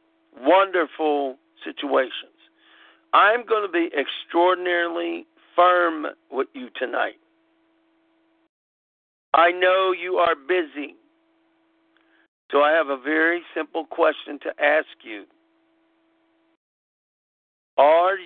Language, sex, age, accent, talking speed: English, male, 50-69, American, 90 wpm